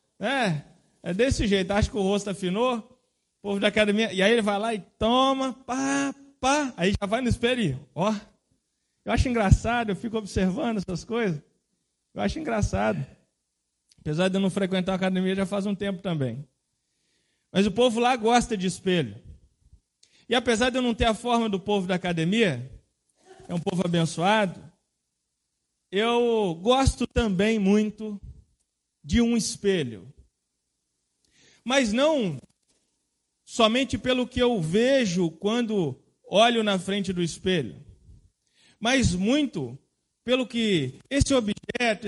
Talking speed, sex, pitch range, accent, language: 145 wpm, male, 140-230 Hz, Brazilian, Portuguese